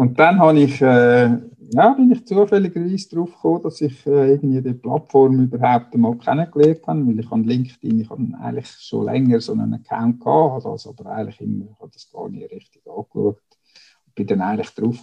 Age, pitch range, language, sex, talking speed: 50-69, 120-155 Hz, German, male, 200 wpm